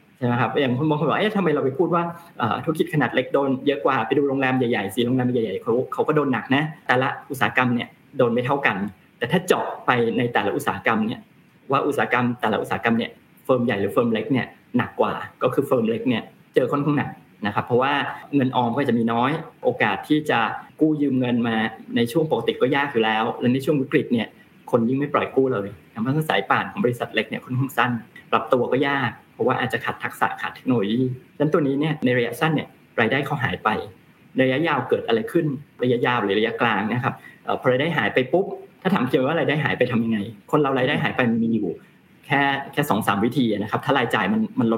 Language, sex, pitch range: Thai, male, 120-150 Hz